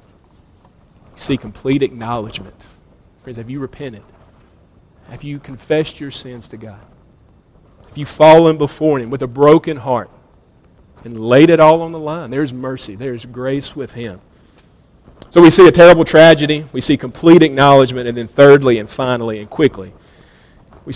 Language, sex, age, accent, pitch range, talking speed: English, male, 40-59, American, 125-165 Hz, 155 wpm